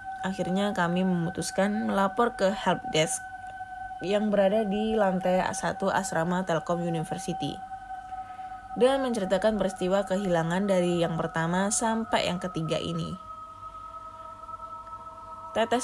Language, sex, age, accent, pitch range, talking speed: Indonesian, female, 20-39, native, 165-225 Hz, 100 wpm